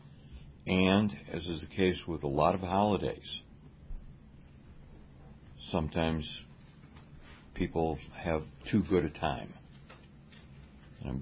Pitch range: 70-85 Hz